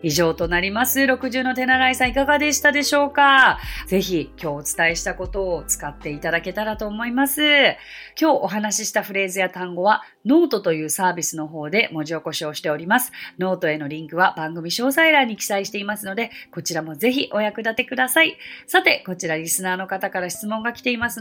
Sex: female